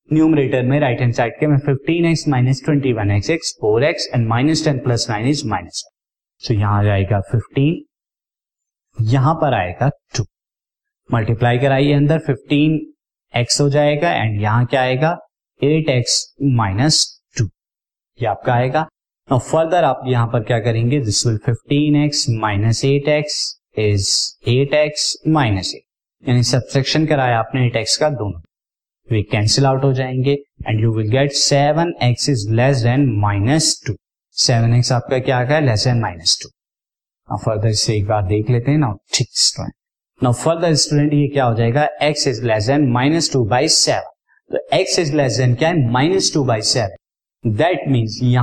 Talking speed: 75 wpm